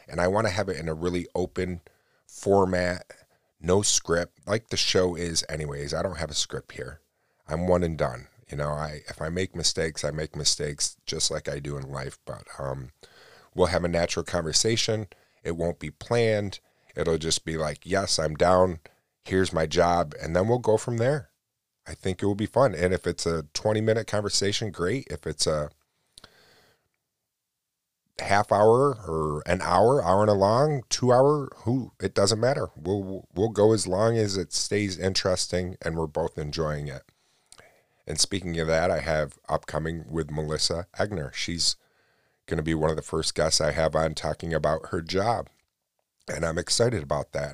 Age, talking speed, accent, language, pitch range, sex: 30-49, 185 wpm, American, English, 80-100 Hz, male